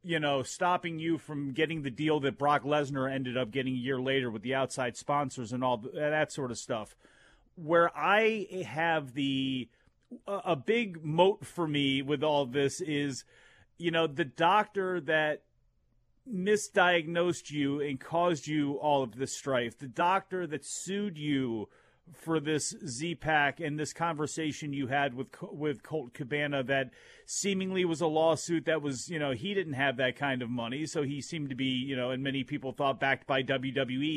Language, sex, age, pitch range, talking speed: English, male, 30-49, 135-175 Hz, 175 wpm